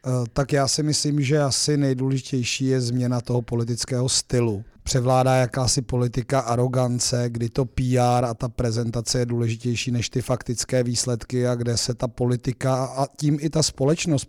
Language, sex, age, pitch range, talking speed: Czech, male, 30-49, 120-130 Hz, 160 wpm